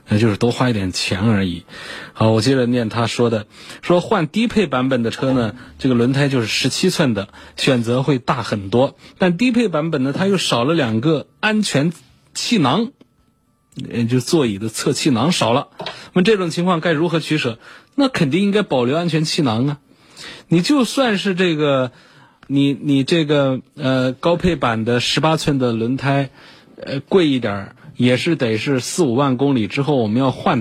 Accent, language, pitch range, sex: native, Chinese, 120-160 Hz, male